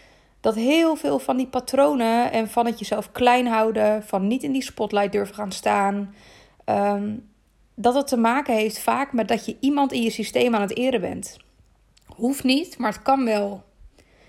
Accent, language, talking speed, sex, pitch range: Dutch, Dutch, 185 wpm, female, 205-245 Hz